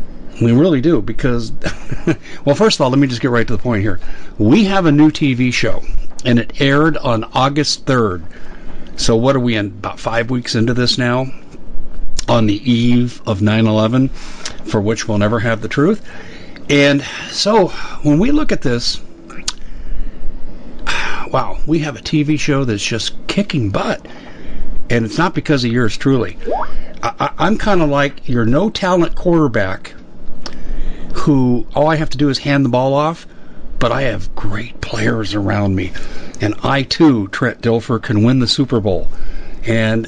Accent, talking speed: American, 175 wpm